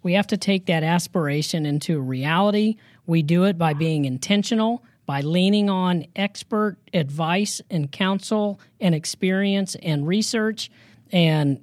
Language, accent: English, American